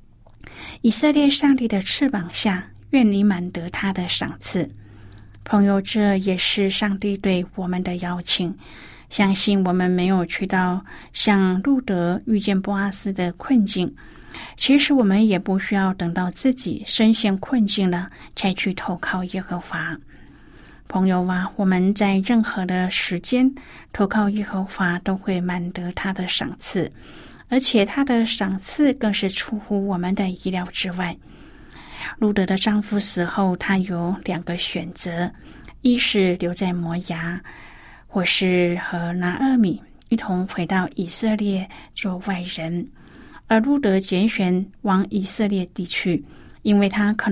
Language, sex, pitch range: Chinese, female, 180-210 Hz